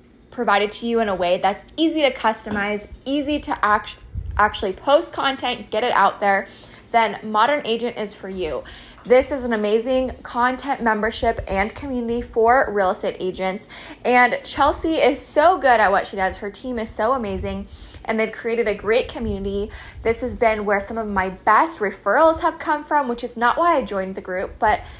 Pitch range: 205-250 Hz